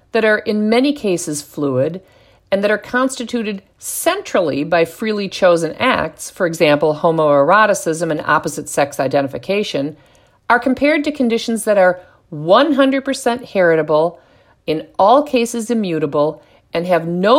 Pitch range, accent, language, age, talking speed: 155-225 Hz, American, English, 50-69, 125 wpm